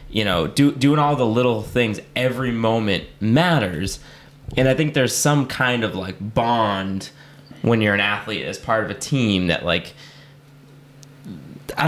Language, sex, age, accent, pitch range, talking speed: English, male, 20-39, American, 100-135 Hz, 160 wpm